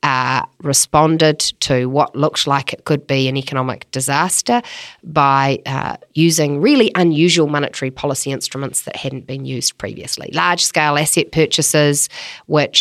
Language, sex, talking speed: English, female, 140 wpm